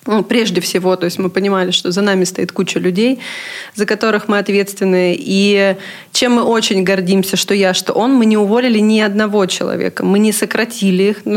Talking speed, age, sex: 195 wpm, 20-39, female